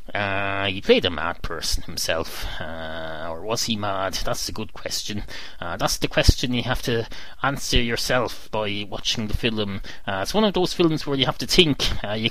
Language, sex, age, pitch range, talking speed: English, male, 30-49, 100-130 Hz, 205 wpm